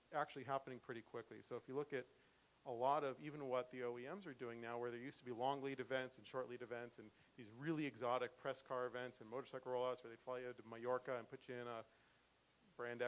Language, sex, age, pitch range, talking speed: English, male, 40-59, 120-135 Hz, 245 wpm